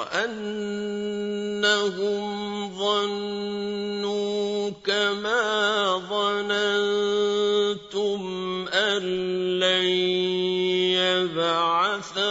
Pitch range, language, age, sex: 185-210 Hz, Arabic, 50-69, male